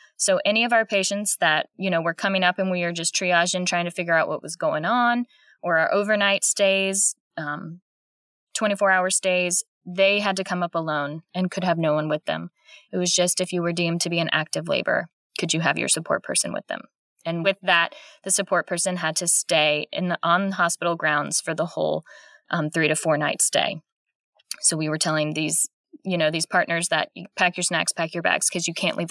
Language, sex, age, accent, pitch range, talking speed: English, female, 20-39, American, 170-205 Hz, 220 wpm